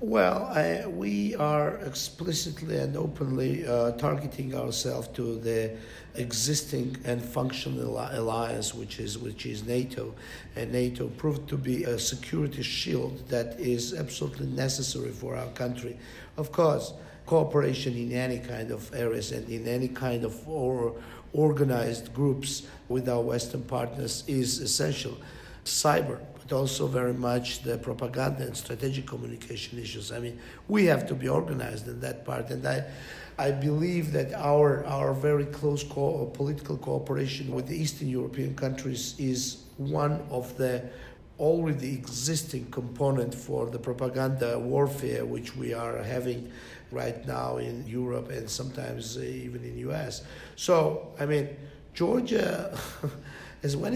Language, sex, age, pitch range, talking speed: English, male, 50-69, 120-145 Hz, 135 wpm